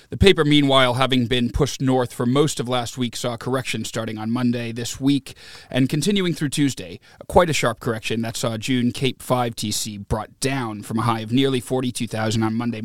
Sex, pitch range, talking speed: male, 110-130 Hz, 200 wpm